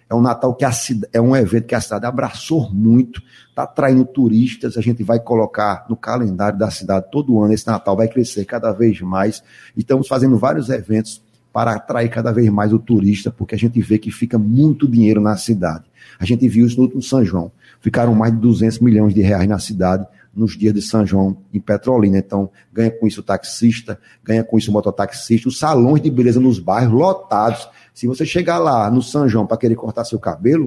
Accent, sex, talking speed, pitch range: Brazilian, male, 205 wpm, 110-125 Hz